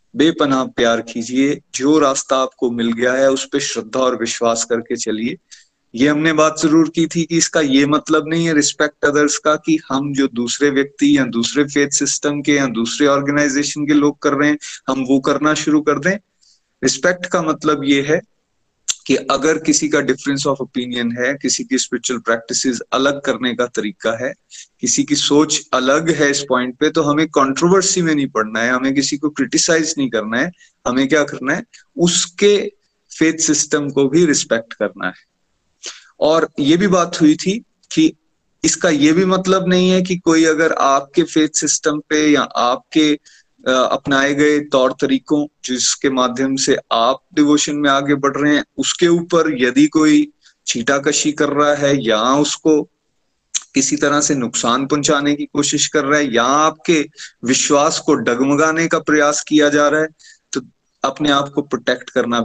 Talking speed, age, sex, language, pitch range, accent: 180 wpm, 30-49, male, Hindi, 135-160 Hz, native